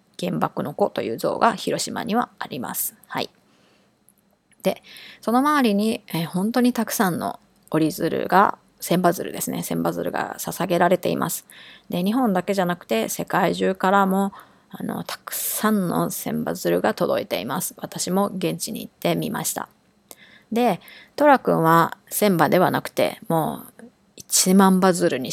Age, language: 20-39, Japanese